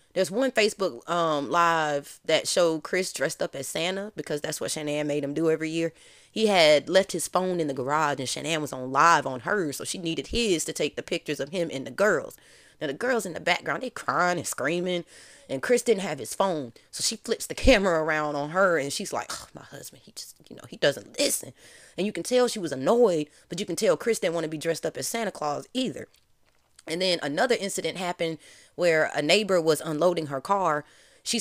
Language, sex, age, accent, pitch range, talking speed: English, female, 20-39, American, 150-190 Hz, 230 wpm